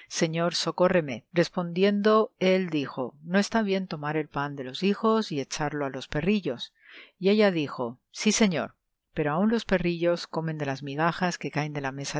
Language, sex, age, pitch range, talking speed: Spanish, female, 50-69, 145-185 Hz, 180 wpm